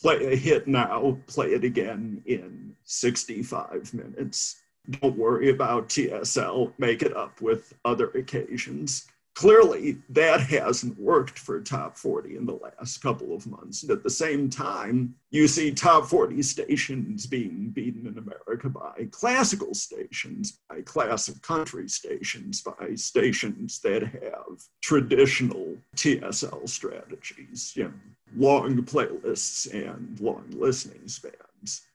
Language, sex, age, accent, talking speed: English, male, 50-69, American, 130 wpm